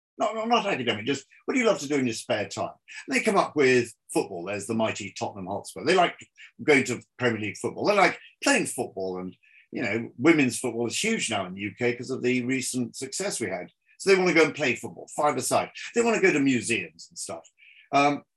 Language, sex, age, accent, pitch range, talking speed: English, male, 50-69, British, 110-140 Hz, 240 wpm